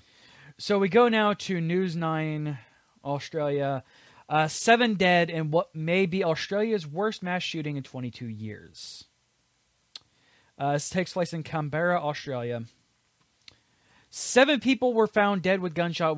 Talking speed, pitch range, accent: 135 wpm, 140-180 Hz, American